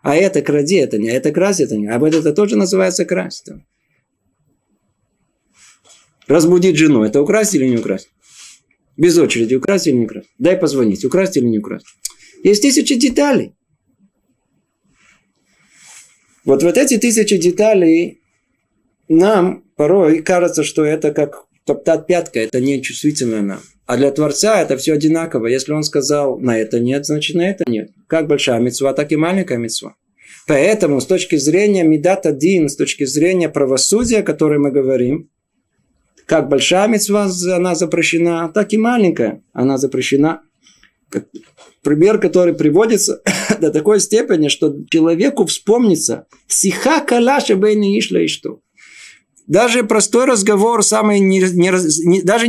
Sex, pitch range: male, 145-205 Hz